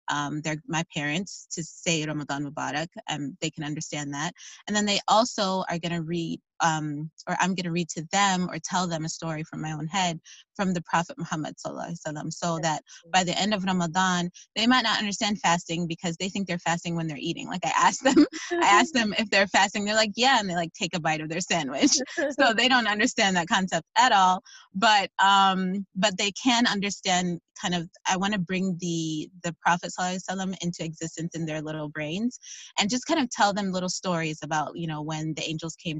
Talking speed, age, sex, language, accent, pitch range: 215 wpm, 20-39, female, English, American, 160-195 Hz